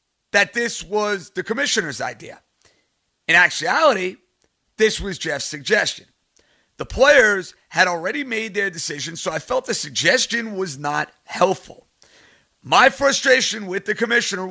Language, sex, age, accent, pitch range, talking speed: English, male, 50-69, American, 150-210 Hz, 130 wpm